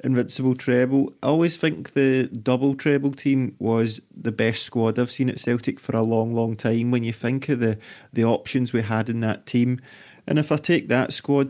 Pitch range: 120-135 Hz